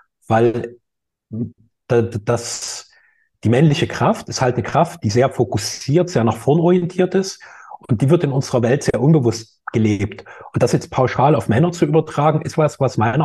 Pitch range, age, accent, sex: 120-155 Hz, 30-49, German, male